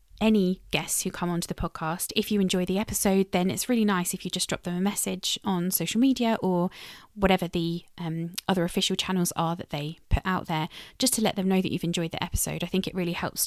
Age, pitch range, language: 20-39, 170-200 Hz, English